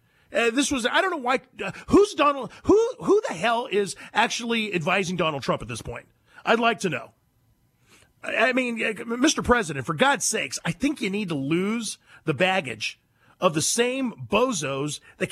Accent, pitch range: American, 150-235 Hz